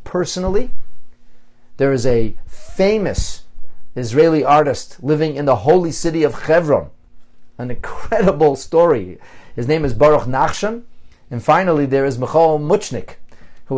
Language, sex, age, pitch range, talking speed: English, male, 40-59, 125-185 Hz, 125 wpm